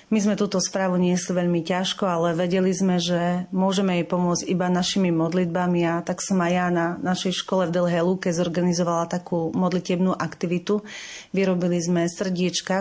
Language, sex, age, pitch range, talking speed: Slovak, female, 30-49, 170-185 Hz, 170 wpm